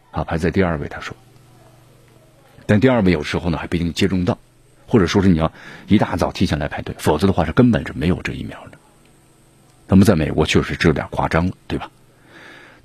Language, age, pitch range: Chinese, 50-69, 90-120 Hz